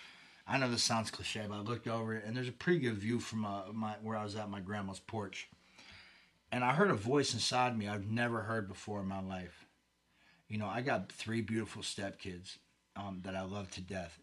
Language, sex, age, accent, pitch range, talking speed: English, male, 30-49, American, 95-120 Hz, 225 wpm